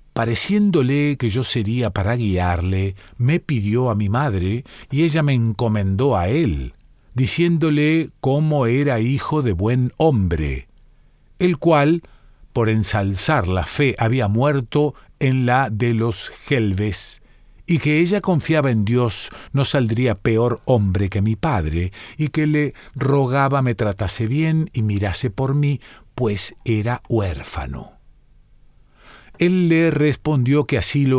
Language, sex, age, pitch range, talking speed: Spanish, male, 50-69, 110-145 Hz, 135 wpm